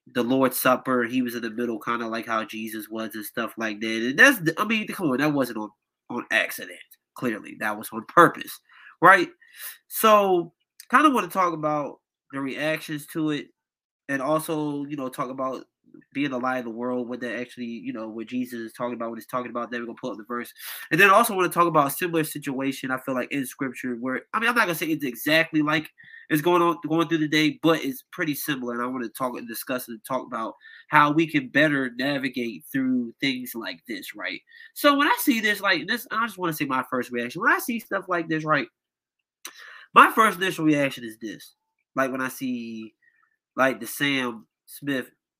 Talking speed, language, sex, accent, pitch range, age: 230 wpm, English, male, American, 125-195 Hz, 20-39